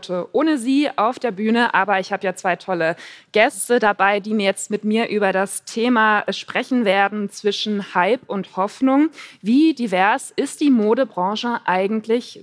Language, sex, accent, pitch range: German, female, German, 205-255 Hz